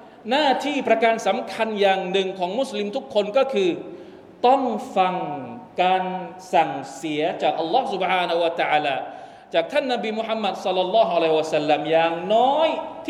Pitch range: 180-255 Hz